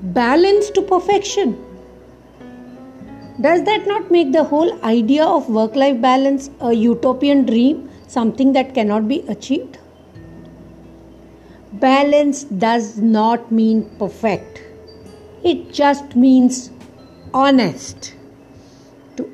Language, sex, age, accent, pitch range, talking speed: English, female, 50-69, Indian, 215-290 Hz, 95 wpm